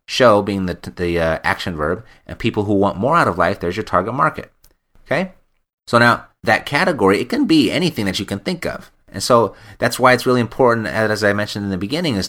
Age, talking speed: 30-49, 235 wpm